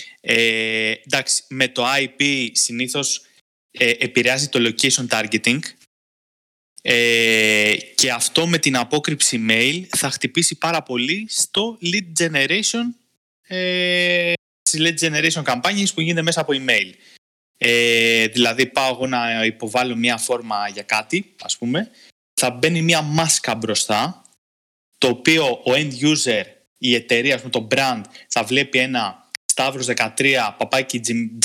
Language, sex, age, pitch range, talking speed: Greek, male, 20-39, 120-165 Hz, 125 wpm